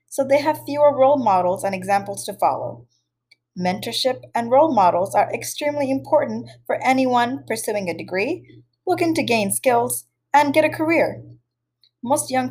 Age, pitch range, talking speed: 20-39, 190-260 Hz, 155 wpm